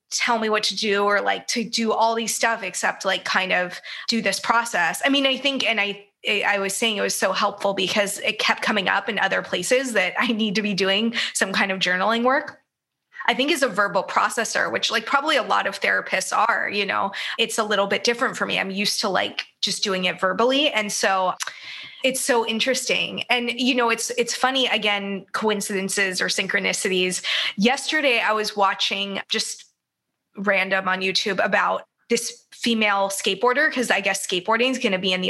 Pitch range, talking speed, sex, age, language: 200-245 Hz, 200 wpm, female, 20-39, English